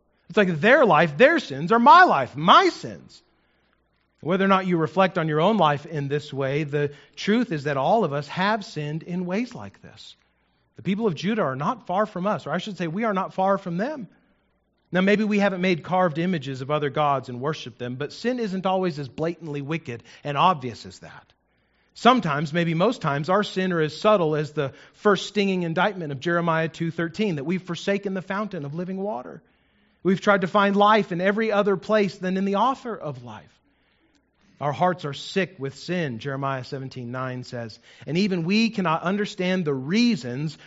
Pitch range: 145-195 Hz